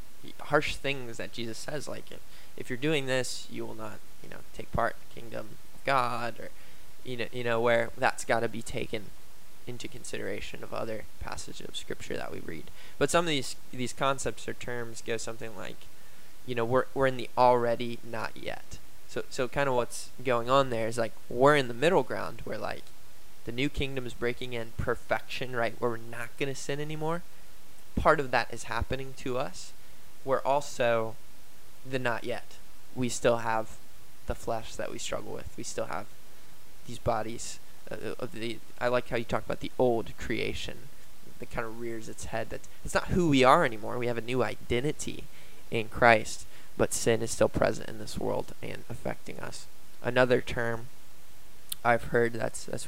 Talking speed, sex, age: 190 wpm, male, 20-39